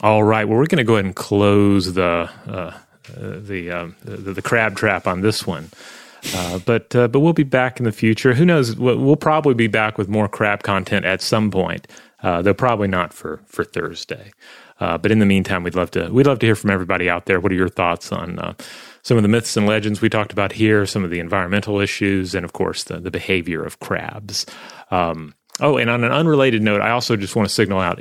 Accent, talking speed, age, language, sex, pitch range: American, 235 wpm, 30-49, English, male, 95-110 Hz